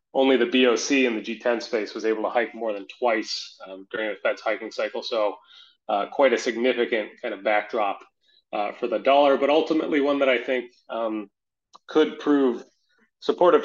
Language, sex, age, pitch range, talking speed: English, male, 20-39, 110-130 Hz, 185 wpm